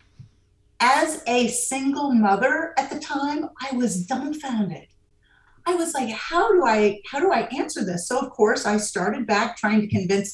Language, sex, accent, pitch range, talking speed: English, female, American, 175-245 Hz, 165 wpm